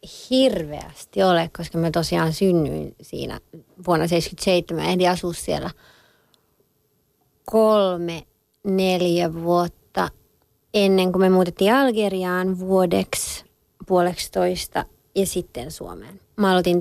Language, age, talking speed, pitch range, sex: Finnish, 30-49, 100 wpm, 175-220 Hz, female